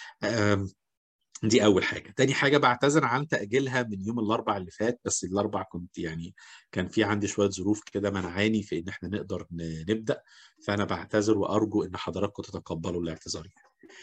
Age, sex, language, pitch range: 50-69, male, English, 95-130 Hz